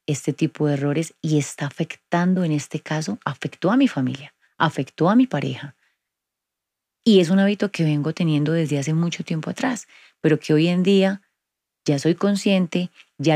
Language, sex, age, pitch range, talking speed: Spanish, female, 30-49, 145-170 Hz, 175 wpm